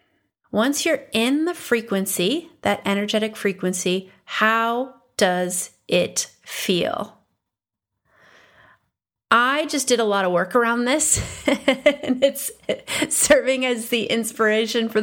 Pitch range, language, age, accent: 210-280 Hz, English, 30-49, American